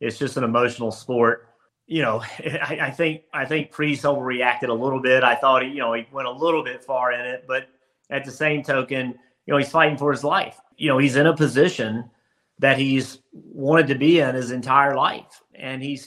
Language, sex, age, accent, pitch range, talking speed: English, male, 30-49, American, 130-155 Hz, 220 wpm